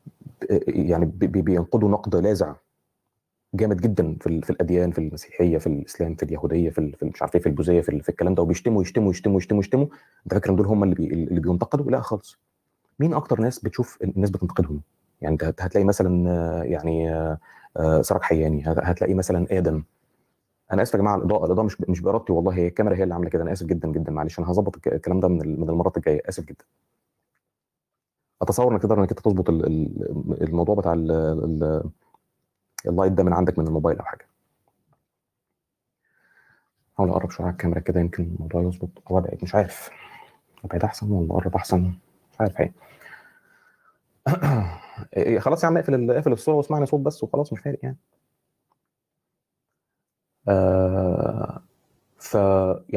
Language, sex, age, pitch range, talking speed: Arabic, male, 30-49, 85-105 Hz, 155 wpm